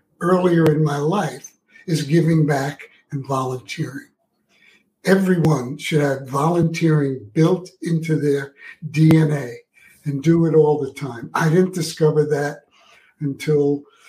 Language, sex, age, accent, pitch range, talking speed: English, male, 60-79, American, 145-165 Hz, 120 wpm